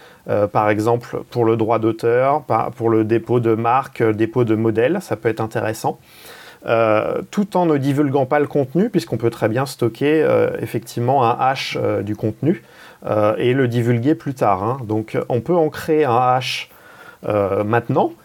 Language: French